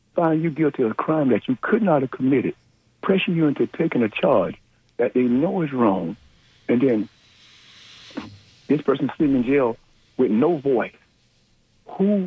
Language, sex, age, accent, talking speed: English, male, 60-79, American, 165 wpm